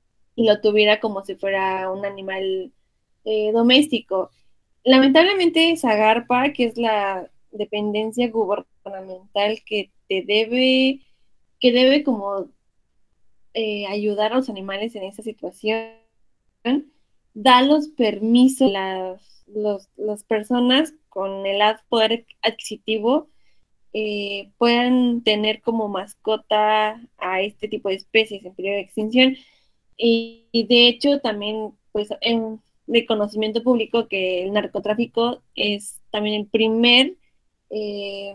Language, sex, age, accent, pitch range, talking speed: Spanish, female, 20-39, Mexican, 200-235 Hz, 115 wpm